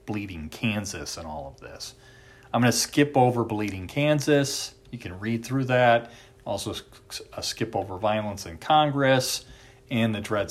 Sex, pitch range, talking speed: male, 95-130 Hz, 155 wpm